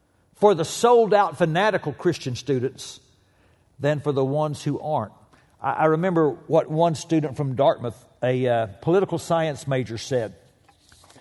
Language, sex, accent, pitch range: English, male, American, 110-175 Hz